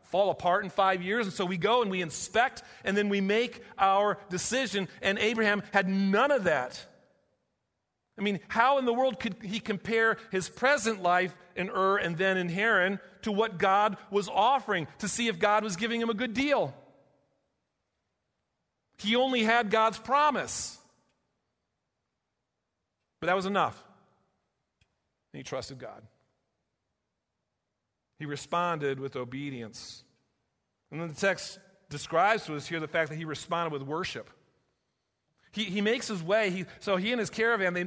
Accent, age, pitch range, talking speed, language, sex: American, 40-59, 170-210 Hz, 160 wpm, English, male